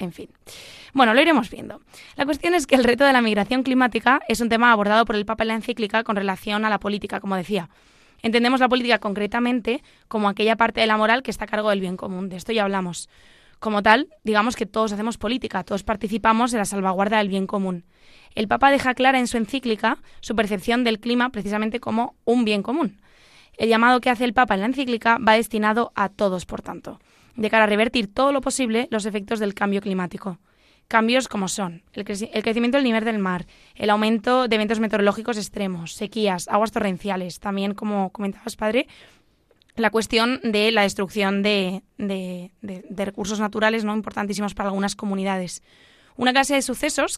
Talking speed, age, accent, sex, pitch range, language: 200 wpm, 20-39, Spanish, female, 205-240 Hz, Spanish